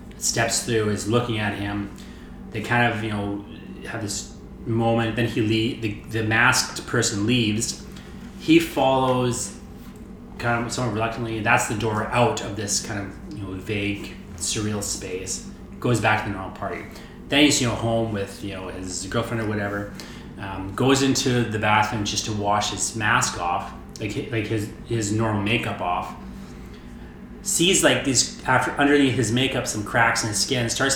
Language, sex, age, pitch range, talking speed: English, male, 30-49, 100-120 Hz, 175 wpm